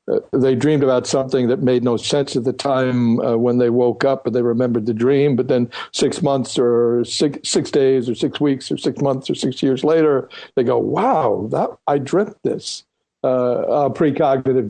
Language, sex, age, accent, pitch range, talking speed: English, male, 60-79, American, 125-140 Hz, 195 wpm